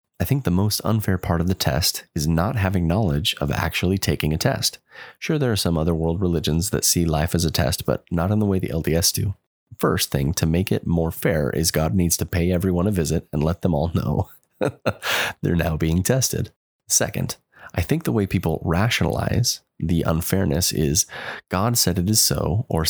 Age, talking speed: 30-49, 205 wpm